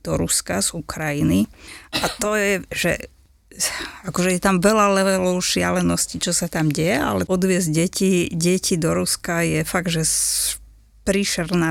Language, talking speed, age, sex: English, 145 wpm, 20-39, female